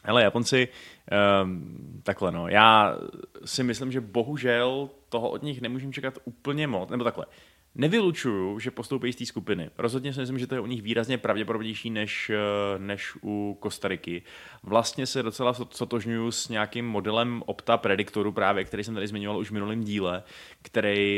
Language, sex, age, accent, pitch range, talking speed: Czech, male, 20-39, native, 100-120 Hz, 165 wpm